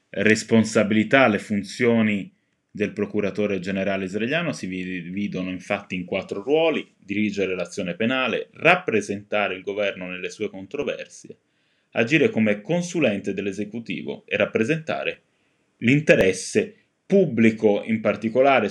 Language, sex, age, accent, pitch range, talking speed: Italian, male, 20-39, native, 100-130 Hz, 105 wpm